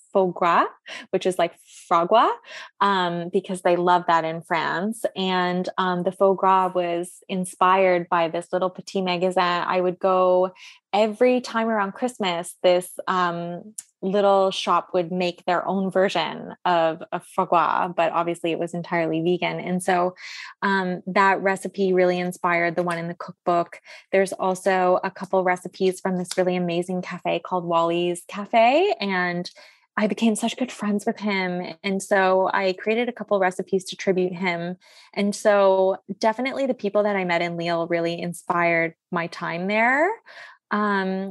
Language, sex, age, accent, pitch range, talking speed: English, female, 20-39, American, 180-205 Hz, 160 wpm